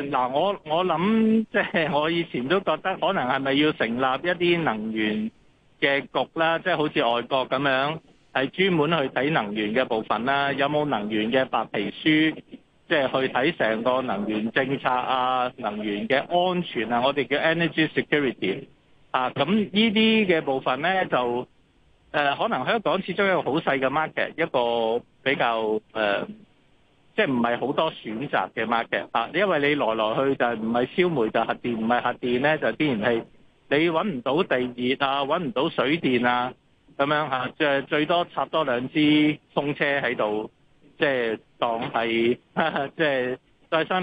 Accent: native